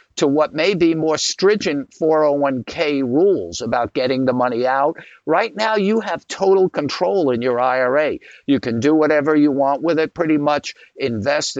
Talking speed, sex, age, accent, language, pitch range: 170 wpm, male, 60-79, American, English, 130-180 Hz